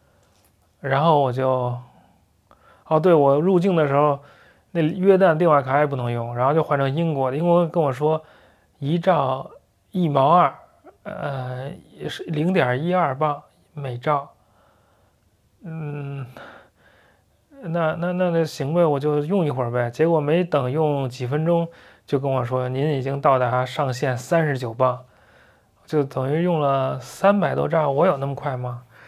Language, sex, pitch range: English, male, 125-160 Hz